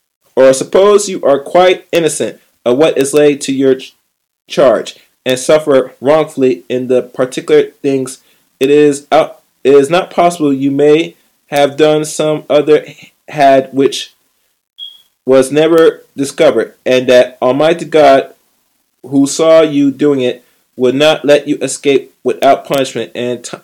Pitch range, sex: 130-160 Hz, male